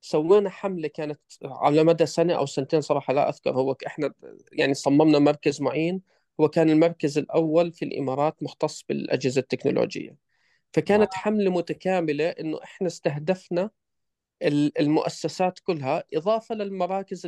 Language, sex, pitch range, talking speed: Arabic, male, 150-195 Hz, 125 wpm